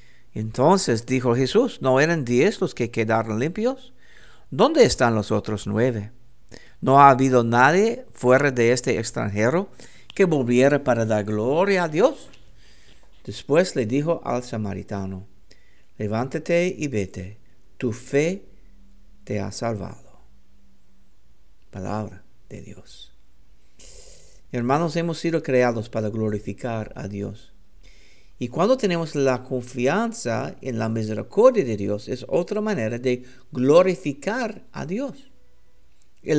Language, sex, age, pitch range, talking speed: English, male, 60-79, 105-140 Hz, 120 wpm